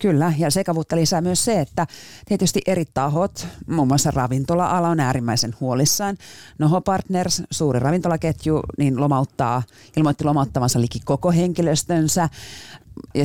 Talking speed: 130 wpm